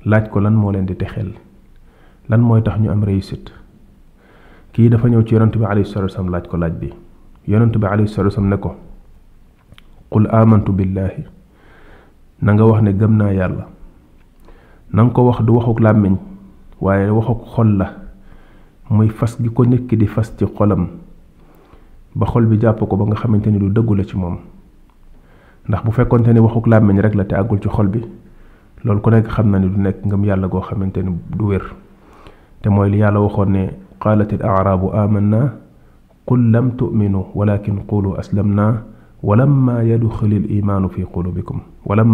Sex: male